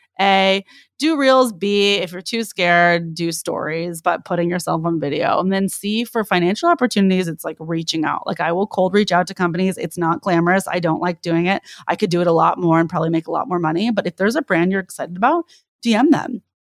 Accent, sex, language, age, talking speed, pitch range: American, female, English, 20-39, 235 wpm, 170-220 Hz